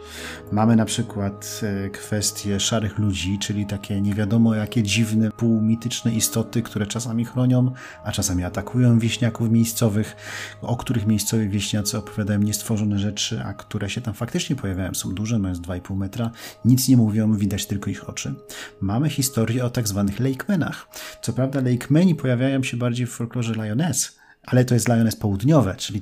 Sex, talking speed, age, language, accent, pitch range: male, 160 wpm, 40-59, Polish, native, 105-135 Hz